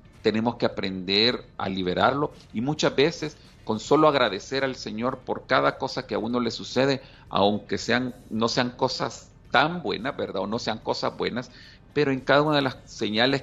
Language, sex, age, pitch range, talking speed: Spanish, male, 40-59, 100-130 Hz, 185 wpm